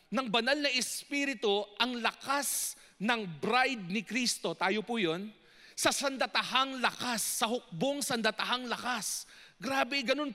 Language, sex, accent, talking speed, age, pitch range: English, male, Filipino, 130 wpm, 40-59, 165-240 Hz